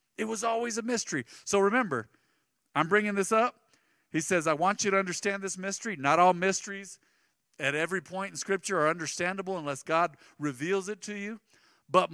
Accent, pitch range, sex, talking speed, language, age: American, 125-180 Hz, male, 185 wpm, English, 50-69